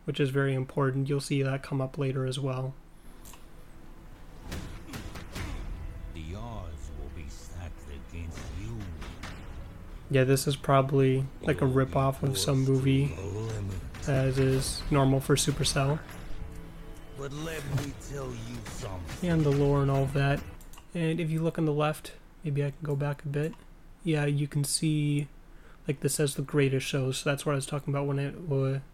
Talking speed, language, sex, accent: 140 wpm, English, male, American